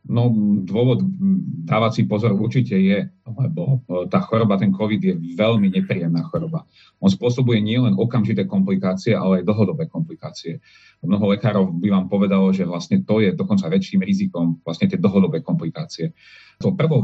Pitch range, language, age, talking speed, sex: 95-150 Hz, Slovak, 40-59, 145 wpm, male